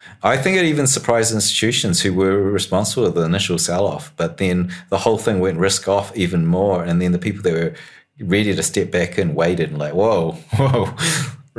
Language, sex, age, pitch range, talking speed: English, male, 30-49, 85-115 Hz, 205 wpm